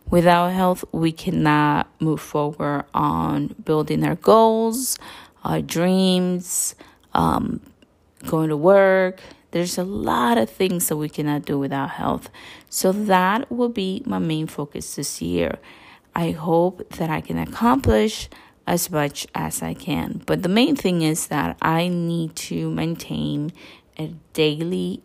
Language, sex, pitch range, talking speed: English, female, 145-180 Hz, 140 wpm